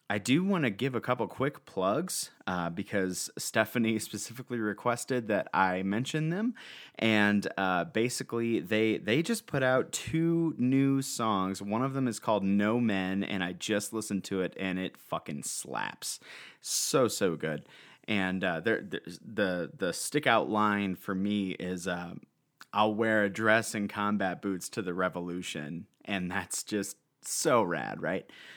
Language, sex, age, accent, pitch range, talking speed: English, male, 30-49, American, 95-125 Hz, 160 wpm